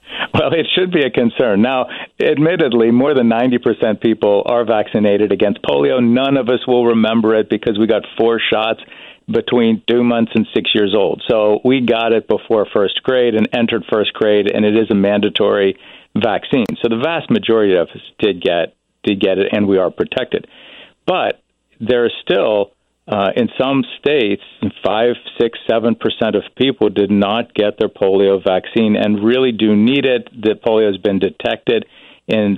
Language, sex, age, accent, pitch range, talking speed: English, male, 50-69, American, 100-115 Hz, 180 wpm